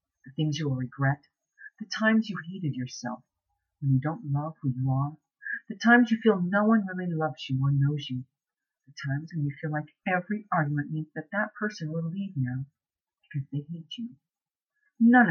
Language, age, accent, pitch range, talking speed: English, 50-69, American, 145-215 Hz, 190 wpm